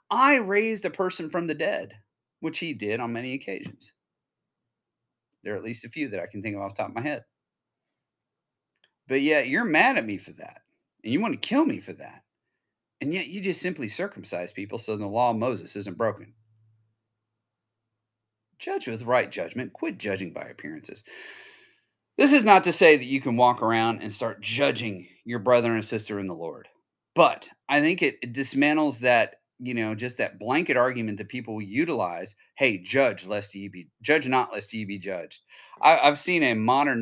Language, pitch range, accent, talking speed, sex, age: English, 100-130 Hz, American, 195 wpm, male, 40-59